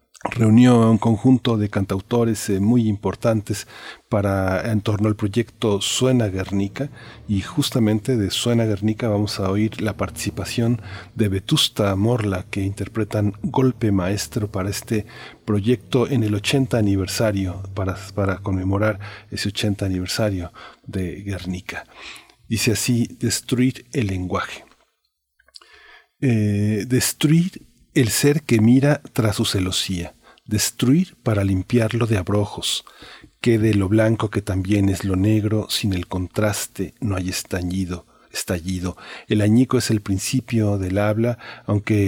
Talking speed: 125 wpm